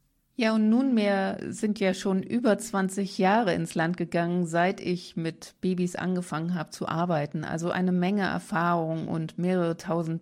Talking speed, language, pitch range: 160 wpm, German, 155-185 Hz